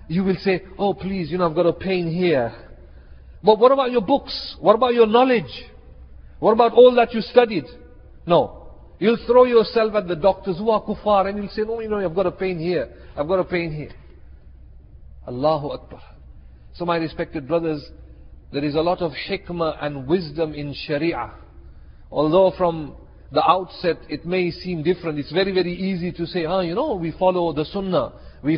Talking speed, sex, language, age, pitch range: 190 wpm, male, English, 50-69, 165-205 Hz